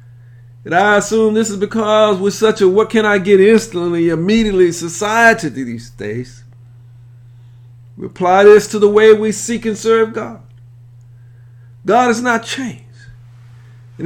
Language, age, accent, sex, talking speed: English, 50-69, American, male, 125 wpm